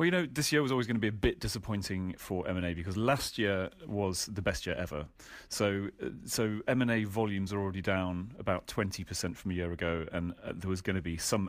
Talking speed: 230 wpm